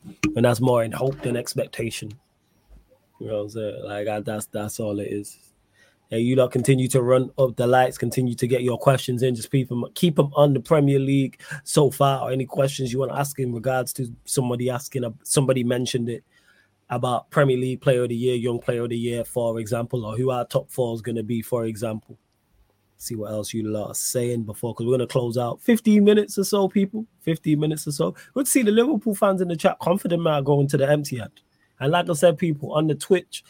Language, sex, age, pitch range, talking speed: English, male, 20-39, 120-145 Hz, 235 wpm